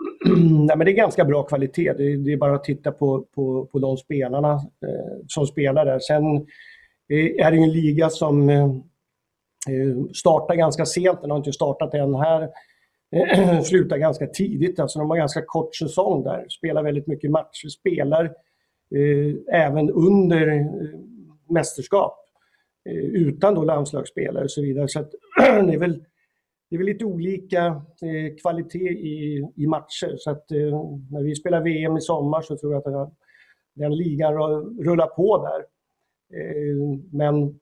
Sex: male